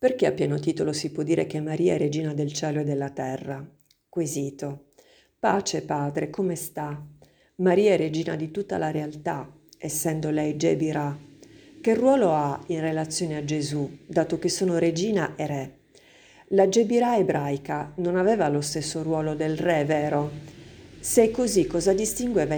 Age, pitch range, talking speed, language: 50-69, 145-175 Hz, 160 wpm, Italian